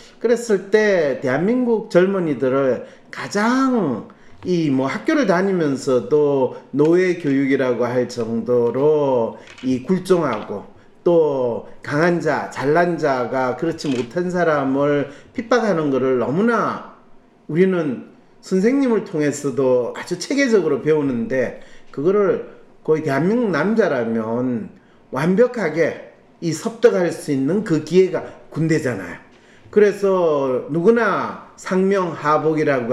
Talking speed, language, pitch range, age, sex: 80 wpm, English, 135-215 Hz, 40-59, male